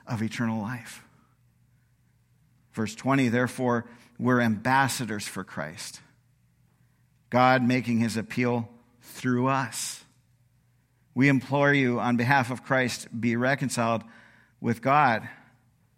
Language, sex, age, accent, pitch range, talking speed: English, male, 50-69, American, 130-190 Hz, 100 wpm